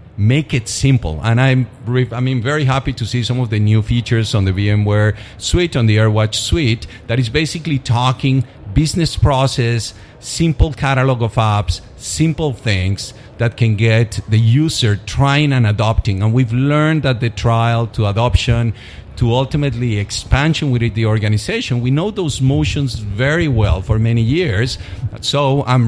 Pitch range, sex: 110-135 Hz, male